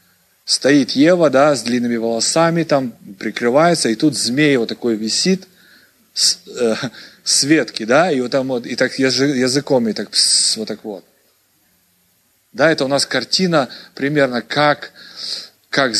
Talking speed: 150 wpm